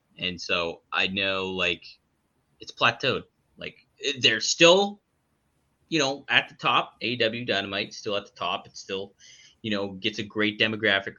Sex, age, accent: male, 20-39, American